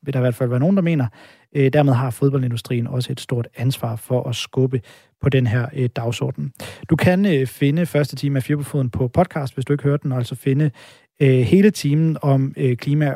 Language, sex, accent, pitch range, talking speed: Danish, male, native, 125-155 Hz, 205 wpm